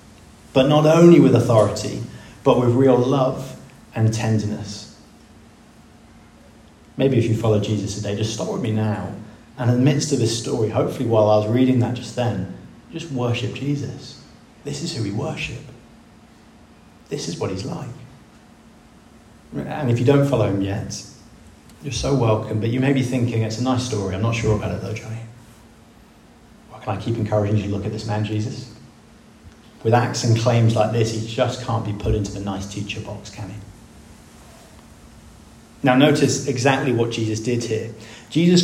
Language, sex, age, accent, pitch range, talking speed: English, male, 30-49, British, 110-130 Hz, 175 wpm